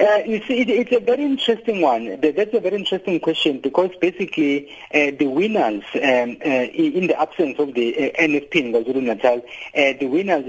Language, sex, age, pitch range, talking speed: English, male, 50-69, 130-170 Hz, 195 wpm